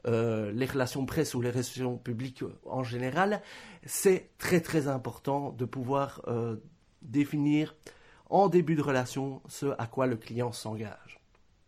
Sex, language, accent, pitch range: male, French, French, 130-165 Hz